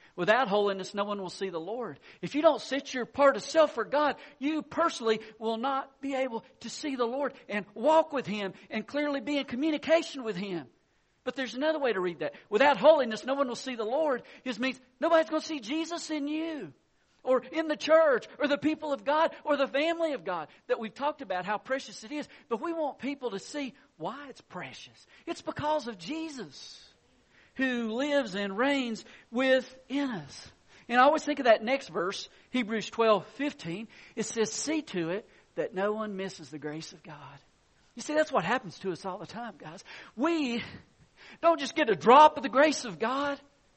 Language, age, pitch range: English, 50-69, 205-290 Hz